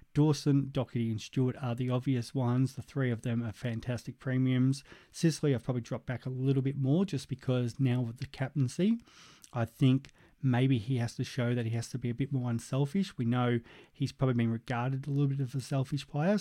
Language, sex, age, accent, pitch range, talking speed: English, male, 30-49, Australian, 120-135 Hz, 215 wpm